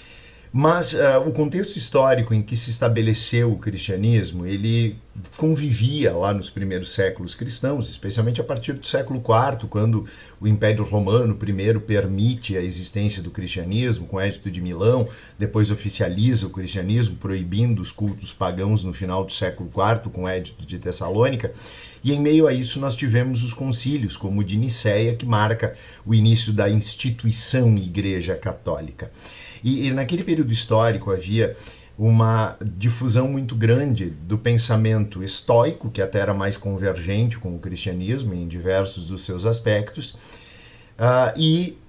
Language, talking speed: Portuguese, 150 wpm